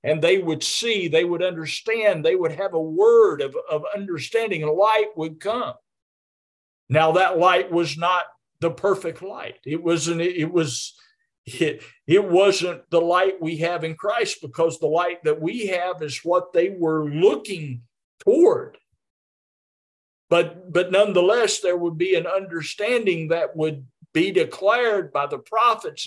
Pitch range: 165-235 Hz